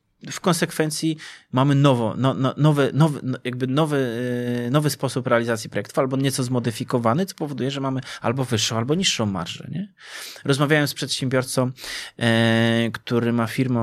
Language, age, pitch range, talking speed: Polish, 30-49, 115-150 Hz, 145 wpm